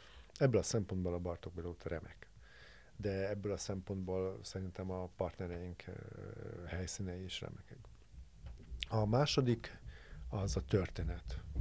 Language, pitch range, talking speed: Hungarian, 90-110 Hz, 115 wpm